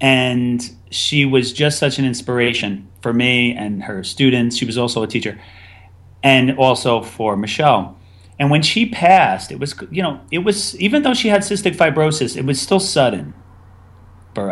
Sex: male